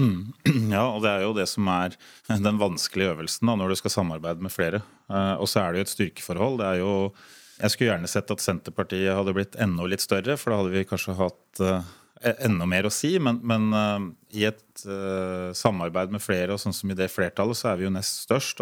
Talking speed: 230 wpm